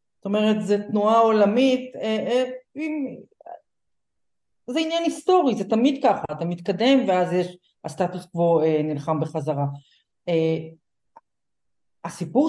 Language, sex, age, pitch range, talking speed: Hebrew, female, 40-59, 160-235 Hz, 120 wpm